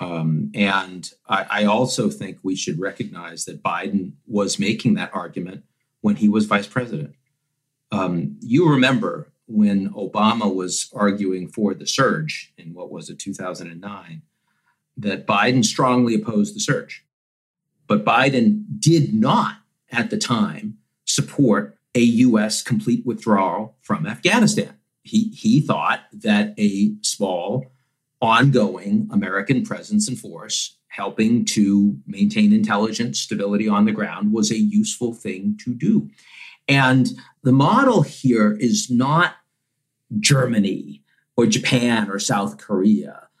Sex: male